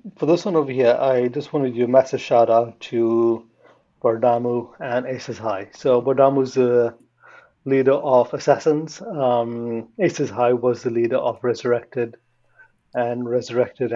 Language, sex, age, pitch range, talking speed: English, male, 30-49, 115-130 Hz, 155 wpm